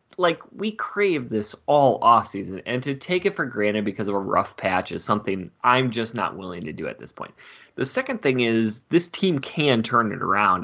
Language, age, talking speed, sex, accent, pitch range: English, 20-39, 215 wpm, male, American, 105-135 Hz